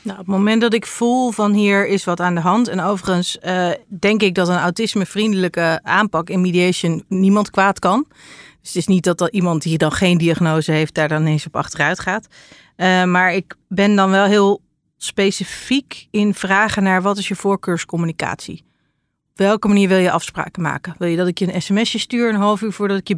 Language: English